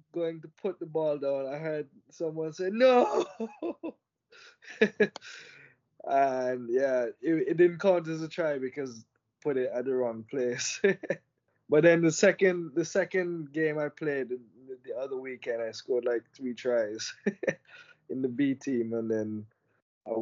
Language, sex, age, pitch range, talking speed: English, male, 20-39, 120-165 Hz, 155 wpm